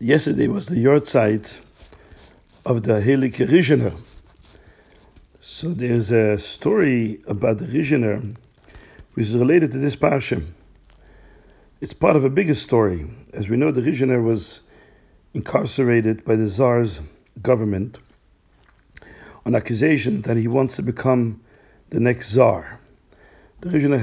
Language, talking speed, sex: English, 125 wpm, male